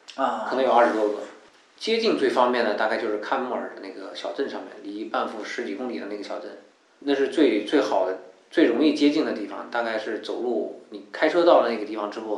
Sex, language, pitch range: male, Chinese, 105-150 Hz